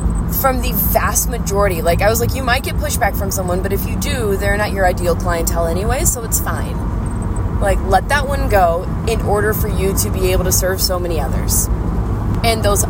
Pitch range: 90-100 Hz